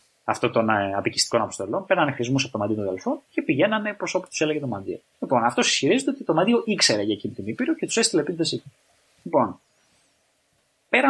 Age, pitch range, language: 20-39, 120-185 Hz, Greek